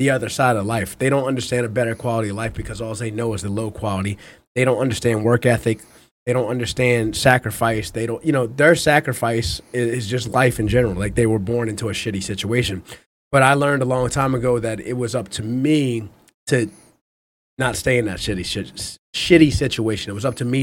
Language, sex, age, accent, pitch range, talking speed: English, male, 30-49, American, 110-155 Hz, 225 wpm